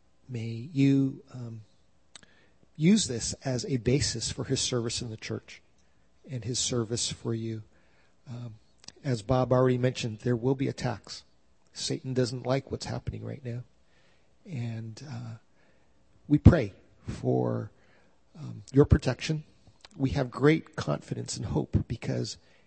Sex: male